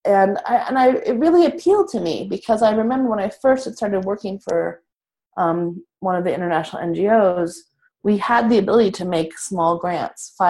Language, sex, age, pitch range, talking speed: English, female, 30-49, 170-220 Hz, 185 wpm